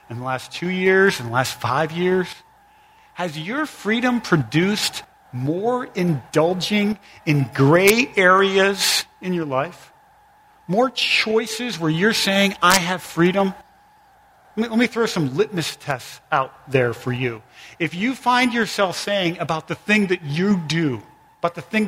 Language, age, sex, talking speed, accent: English, 40-59, male, 150 wpm, American